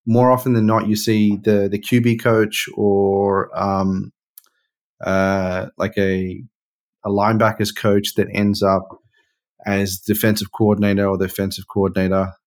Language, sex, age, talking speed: English, male, 30-49, 135 wpm